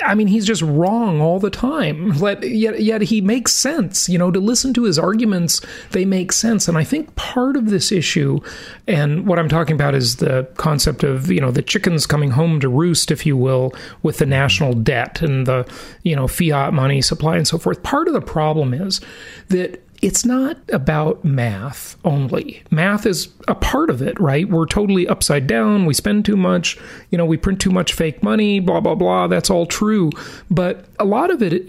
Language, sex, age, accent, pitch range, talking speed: English, male, 40-59, American, 150-205 Hz, 210 wpm